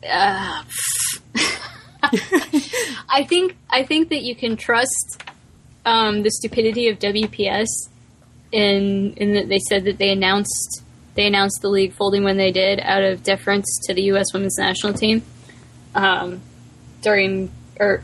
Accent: American